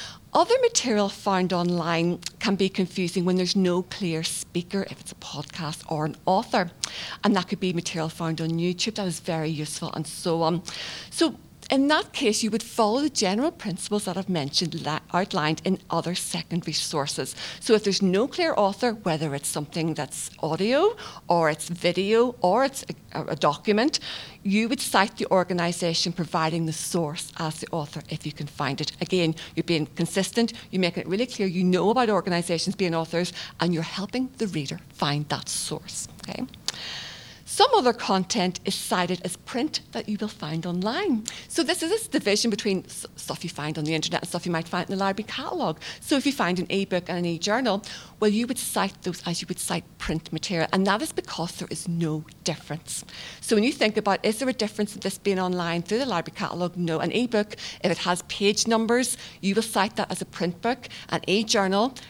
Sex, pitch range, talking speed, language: female, 165-205 Hz, 200 wpm, English